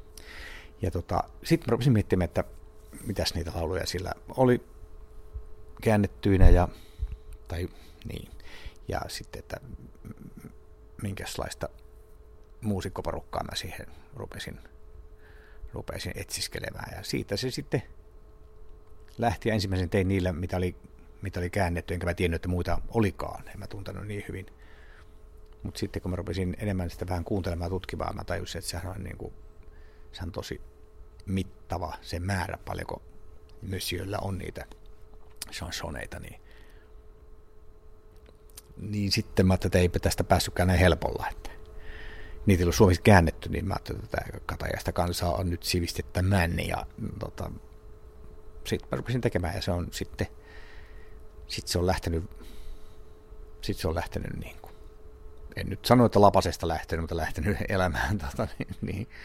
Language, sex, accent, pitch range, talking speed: Finnish, male, native, 75-95 Hz, 140 wpm